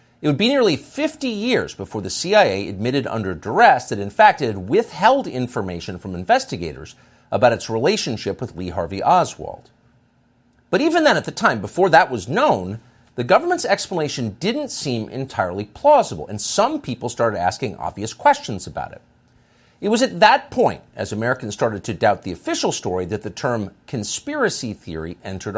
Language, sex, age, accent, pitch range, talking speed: English, male, 50-69, American, 100-145 Hz, 170 wpm